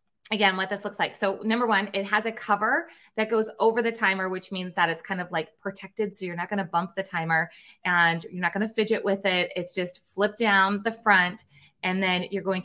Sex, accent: female, American